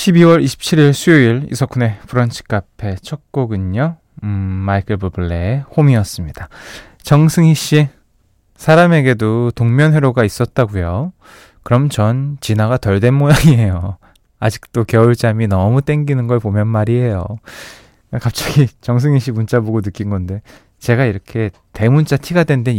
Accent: native